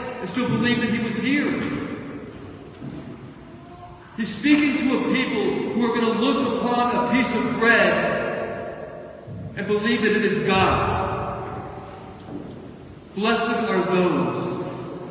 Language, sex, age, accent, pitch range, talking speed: English, male, 40-59, American, 215-250 Hz, 125 wpm